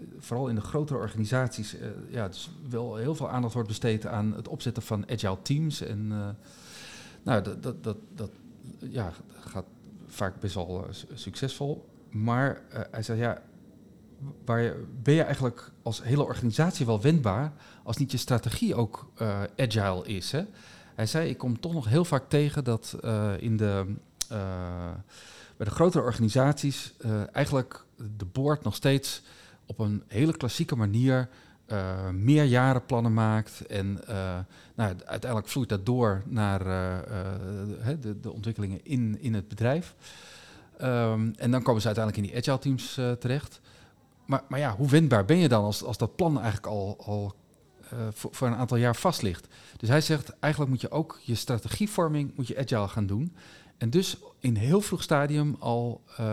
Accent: Dutch